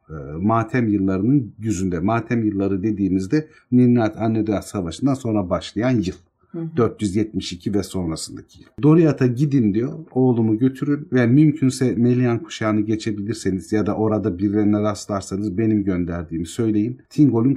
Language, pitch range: Turkish, 100-130 Hz